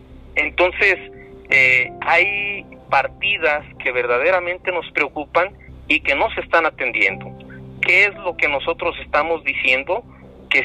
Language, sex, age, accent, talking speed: Spanish, male, 50-69, Mexican, 125 wpm